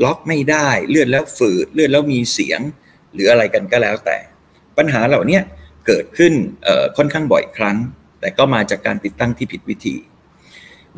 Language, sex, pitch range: Thai, male, 115-150 Hz